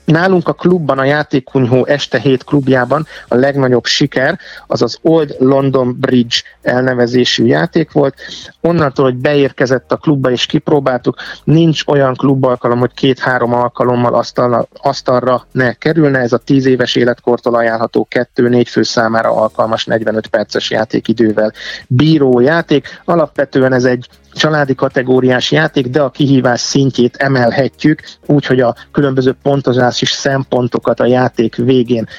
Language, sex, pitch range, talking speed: Hungarian, male, 120-140 Hz, 130 wpm